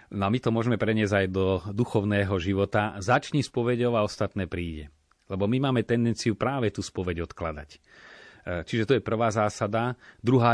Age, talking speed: 30-49, 165 wpm